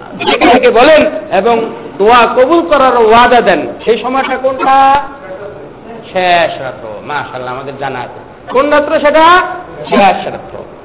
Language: Bengali